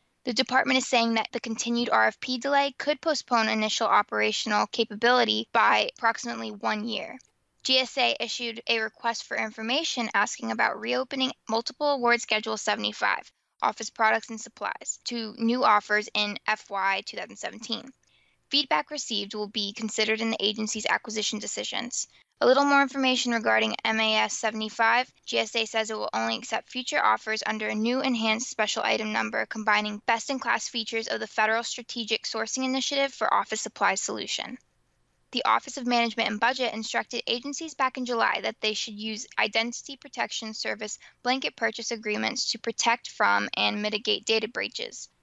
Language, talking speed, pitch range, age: English, 150 wpm, 215-245 Hz, 10-29